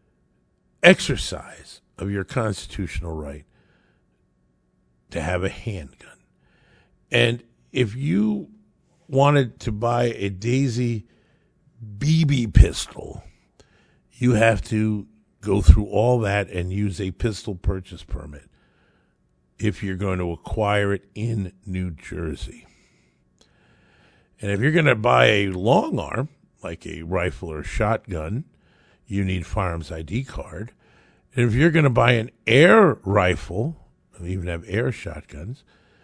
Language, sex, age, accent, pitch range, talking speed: English, male, 50-69, American, 90-120 Hz, 125 wpm